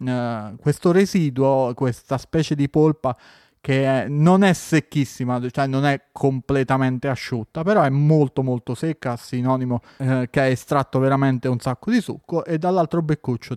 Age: 30-49